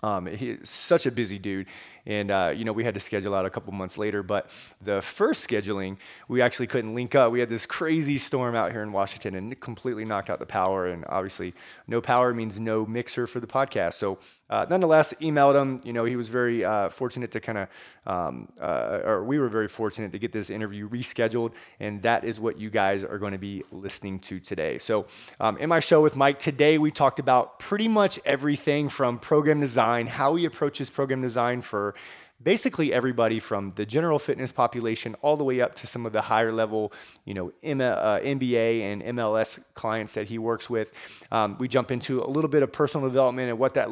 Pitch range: 110-135 Hz